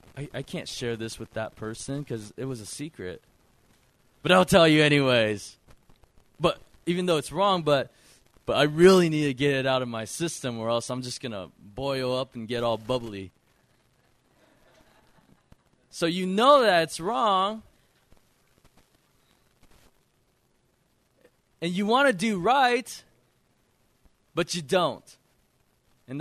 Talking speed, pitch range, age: 140 wpm, 130-210 Hz, 20-39